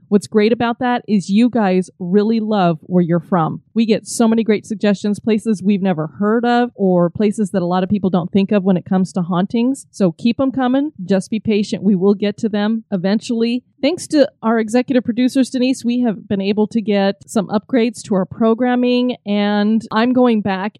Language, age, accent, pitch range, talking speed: English, 30-49, American, 185-220 Hz, 210 wpm